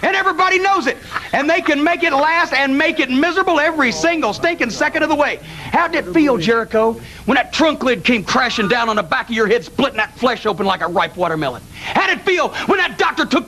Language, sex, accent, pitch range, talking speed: English, male, American, 265-375 Hz, 245 wpm